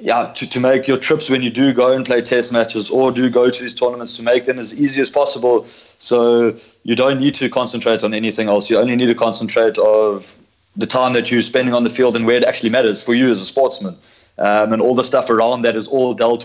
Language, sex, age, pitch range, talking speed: English, male, 20-39, 115-130 Hz, 255 wpm